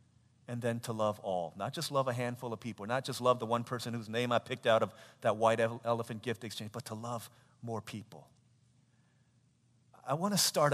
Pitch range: 110-130 Hz